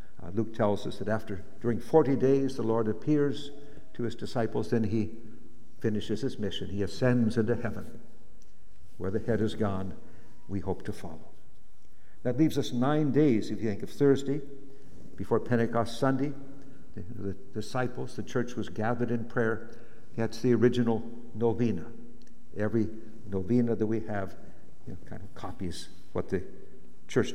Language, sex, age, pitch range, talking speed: English, male, 60-79, 105-120 Hz, 160 wpm